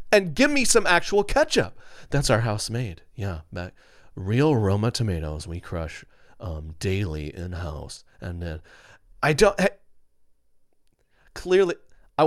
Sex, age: male, 30-49